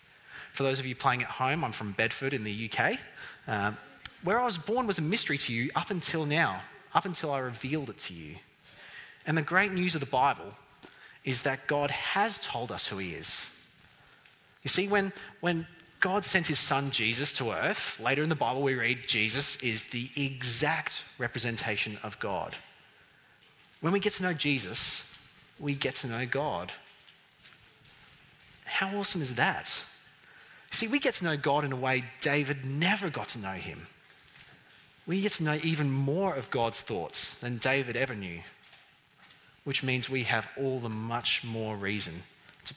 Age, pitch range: 30-49, 120-160 Hz